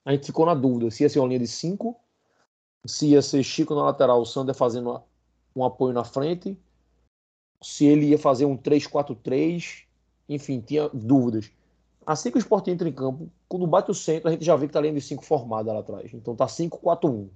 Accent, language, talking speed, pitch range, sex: Brazilian, Portuguese, 205 wpm, 120-150 Hz, male